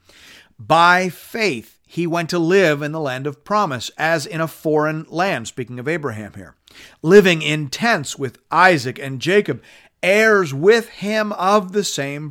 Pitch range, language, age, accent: 125-170 Hz, English, 40-59, American